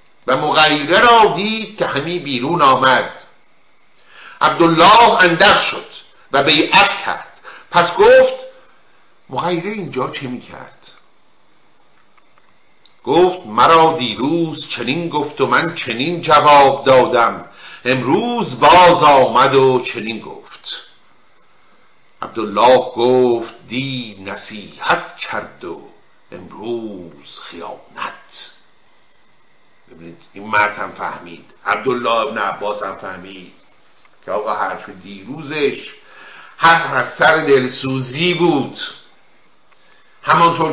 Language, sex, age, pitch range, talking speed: Persian, male, 50-69, 125-175 Hz, 95 wpm